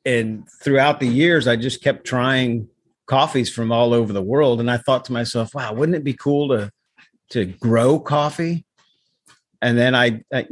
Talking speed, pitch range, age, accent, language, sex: 185 wpm, 110-130 Hz, 50-69, American, English, male